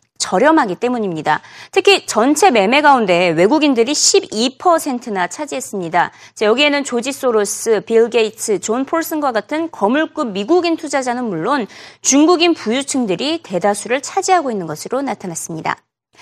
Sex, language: female, Korean